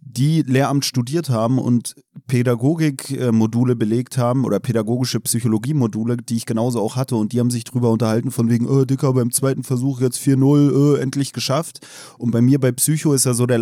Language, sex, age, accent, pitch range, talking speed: German, male, 30-49, German, 115-140 Hz, 195 wpm